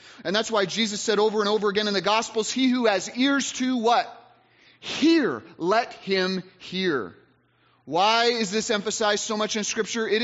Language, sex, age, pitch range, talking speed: English, male, 30-49, 145-210 Hz, 180 wpm